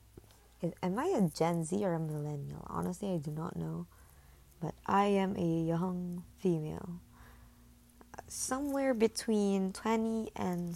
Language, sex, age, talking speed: English, female, 20-39, 130 wpm